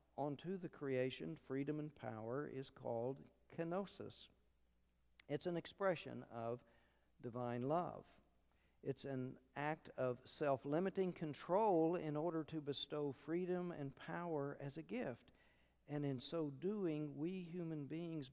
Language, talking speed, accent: English, 125 wpm, American